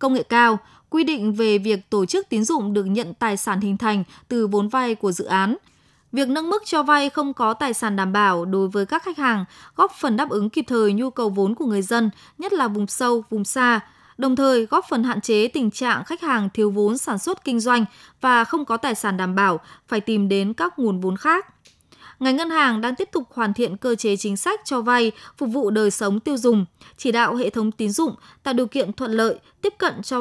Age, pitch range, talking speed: 20-39, 210-270 Hz, 240 wpm